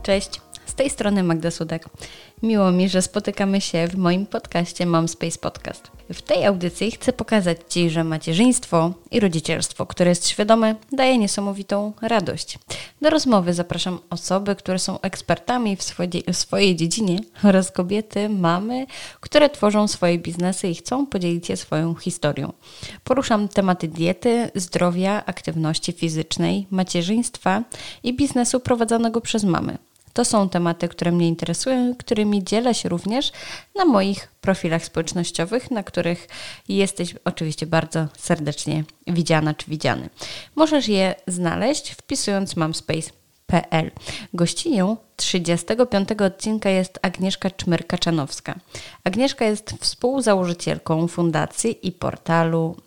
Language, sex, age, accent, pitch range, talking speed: Polish, female, 20-39, native, 170-215 Hz, 125 wpm